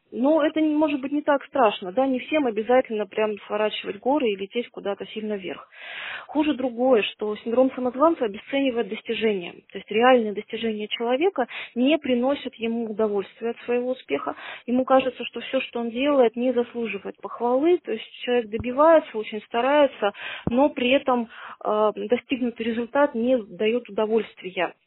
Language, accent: Russian, native